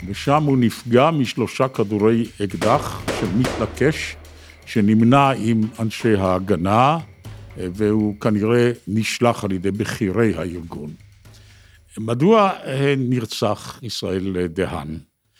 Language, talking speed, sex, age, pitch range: Hebrew, 90 wpm, male, 60-79, 95-120 Hz